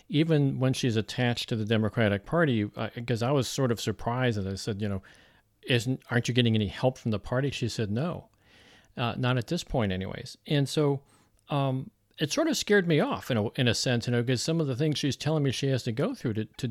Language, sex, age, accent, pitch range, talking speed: English, male, 40-59, American, 110-135 Hz, 250 wpm